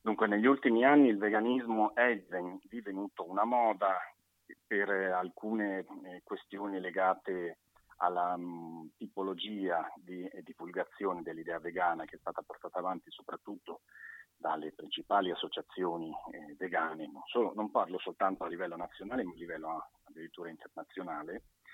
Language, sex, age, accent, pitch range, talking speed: Italian, male, 40-59, native, 90-105 Hz, 115 wpm